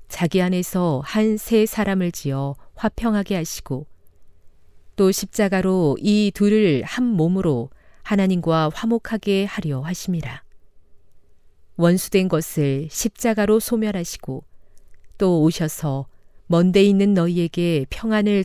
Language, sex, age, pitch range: Korean, female, 40-59, 135-200 Hz